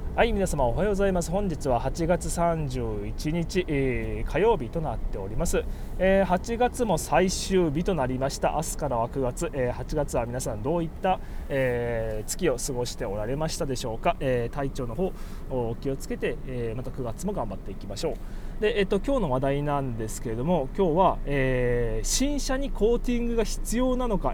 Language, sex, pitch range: Japanese, male, 130-200 Hz